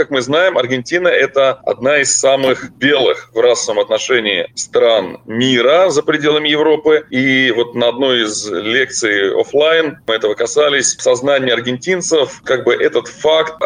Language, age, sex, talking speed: Russian, 20-39, male, 150 wpm